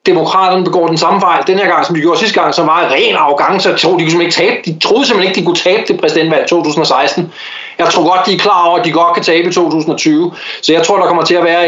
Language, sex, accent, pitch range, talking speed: English, male, Danish, 155-185 Hz, 295 wpm